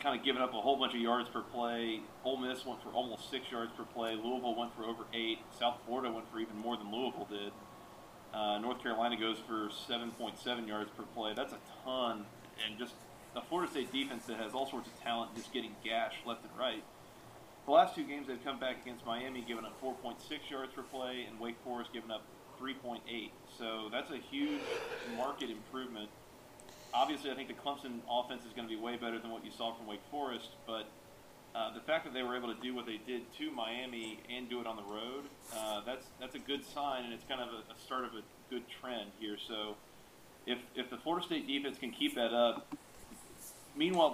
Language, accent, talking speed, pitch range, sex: English, American, 220 wpm, 110-125 Hz, male